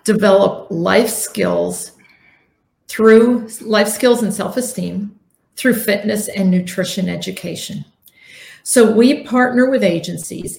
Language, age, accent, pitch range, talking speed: English, 50-69, American, 190-230 Hz, 110 wpm